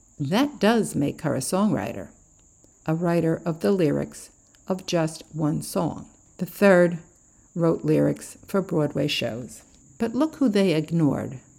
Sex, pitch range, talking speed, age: female, 145-190 Hz, 140 wpm, 60-79